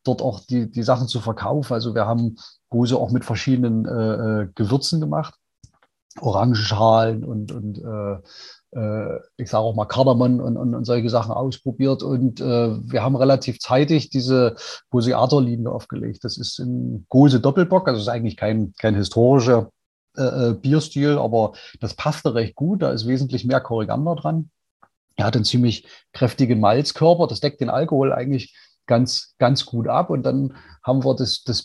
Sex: male